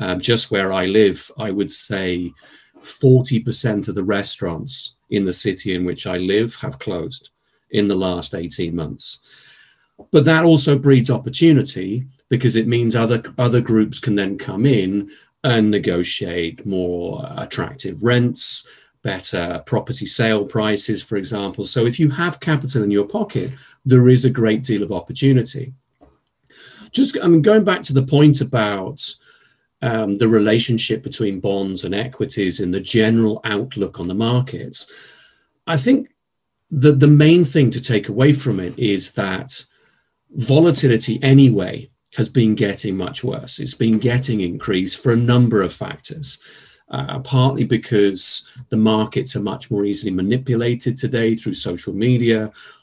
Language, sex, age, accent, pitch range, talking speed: Hebrew, male, 40-59, British, 100-135 Hz, 150 wpm